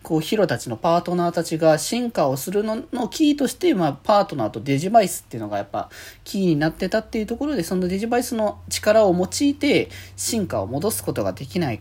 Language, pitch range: Japanese, 125-210 Hz